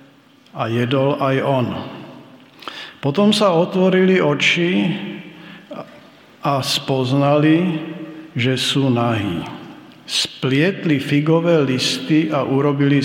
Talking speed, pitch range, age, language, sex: 85 wpm, 130-150 Hz, 50-69, Slovak, male